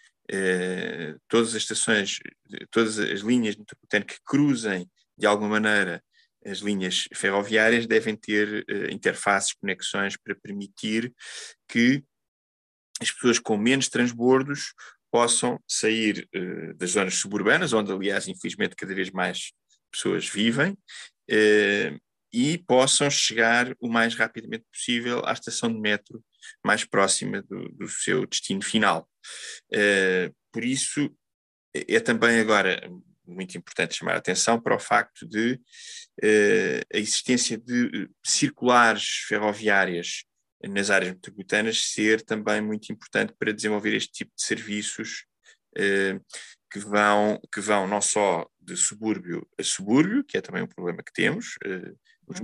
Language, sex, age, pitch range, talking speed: Portuguese, male, 20-39, 105-120 Hz, 130 wpm